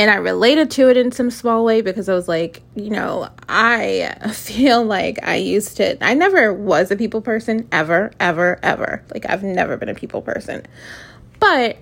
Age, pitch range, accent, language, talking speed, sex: 20-39, 195-245 Hz, American, English, 195 wpm, female